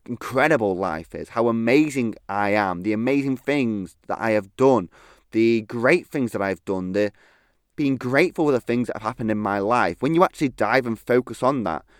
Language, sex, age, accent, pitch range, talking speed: English, male, 20-39, British, 100-130 Hz, 200 wpm